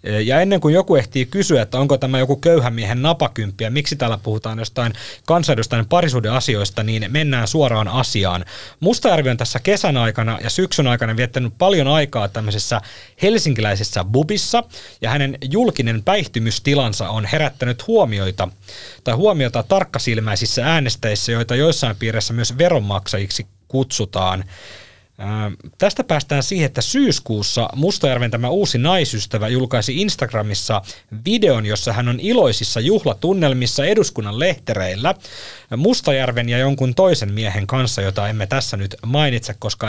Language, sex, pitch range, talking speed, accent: Finnish, male, 110-150 Hz, 130 wpm, native